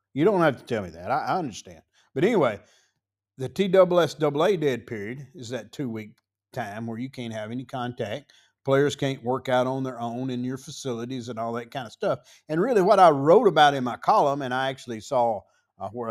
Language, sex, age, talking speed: English, male, 50-69, 210 wpm